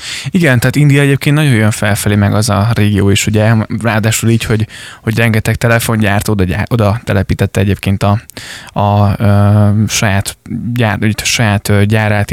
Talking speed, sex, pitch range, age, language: 150 wpm, male, 105-120 Hz, 20-39, Hungarian